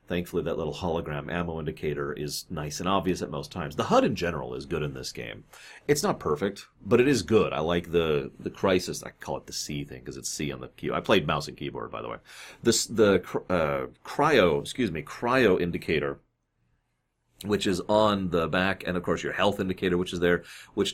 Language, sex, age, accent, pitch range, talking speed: English, male, 30-49, American, 85-110 Hz, 220 wpm